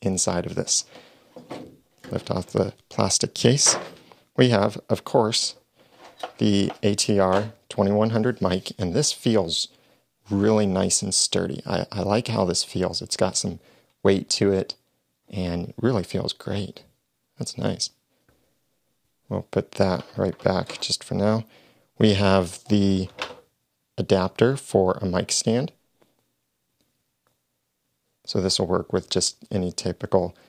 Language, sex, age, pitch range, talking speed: English, male, 40-59, 90-105 Hz, 130 wpm